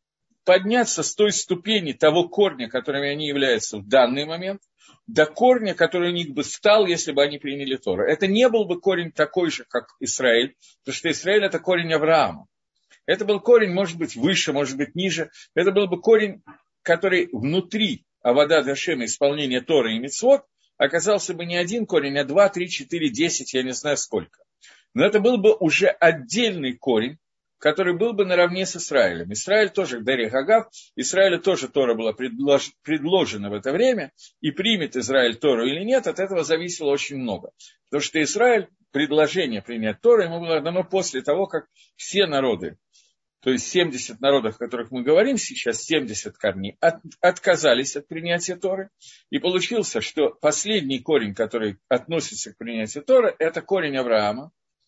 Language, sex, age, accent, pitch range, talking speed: Russian, male, 50-69, native, 140-195 Hz, 170 wpm